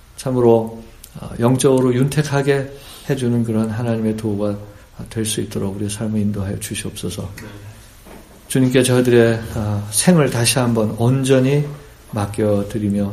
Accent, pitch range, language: native, 105-130 Hz, Korean